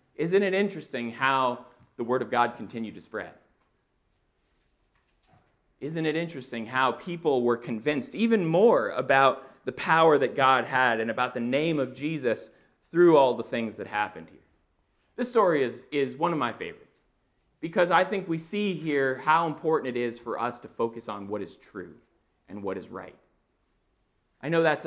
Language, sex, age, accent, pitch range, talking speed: English, male, 30-49, American, 120-160 Hz, 175 wpm